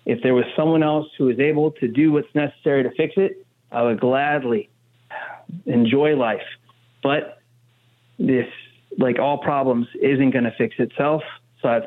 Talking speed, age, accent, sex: 160 wpm, 30-49, American, male